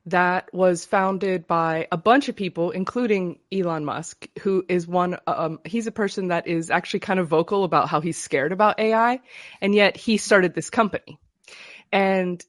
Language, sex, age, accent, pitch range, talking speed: English, female, 20-39, American, 165-200 Hz, 180 wpm